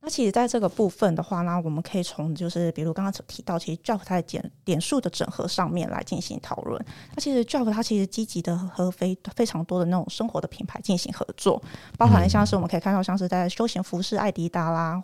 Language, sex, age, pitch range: Chinese, female, 20-39, 175-215 Hz